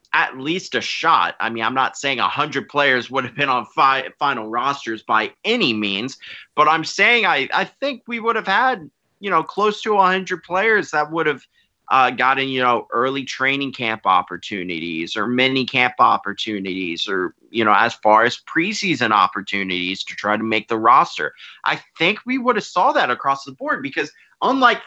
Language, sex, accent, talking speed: English, male, American, 195 wpm